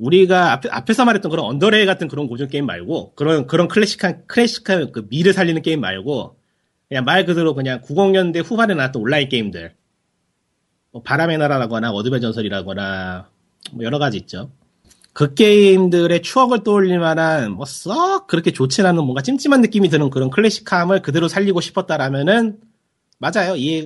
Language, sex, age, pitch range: Korean, male, 30-49, 125-185 Hz